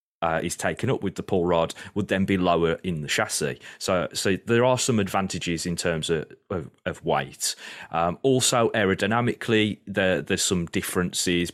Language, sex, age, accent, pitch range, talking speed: English, male, 30-49, British, 85-100 Hz, 175 wpm